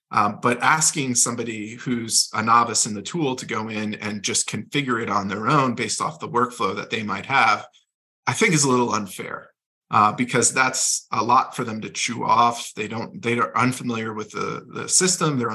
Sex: male